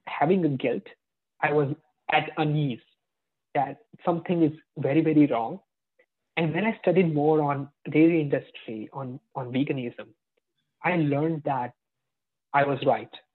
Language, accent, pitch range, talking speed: English, Indian, 135-175 Hz, 135 wpm